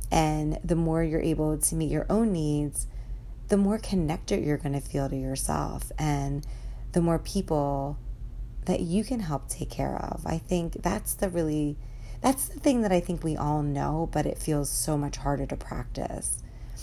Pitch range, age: 145-165 Hz, 30-49